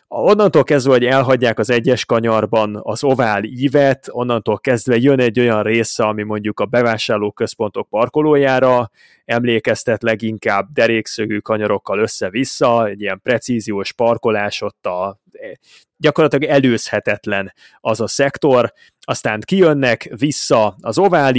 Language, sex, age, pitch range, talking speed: Hungarian, male, 20-39, 110-140 Hz, 120 wpm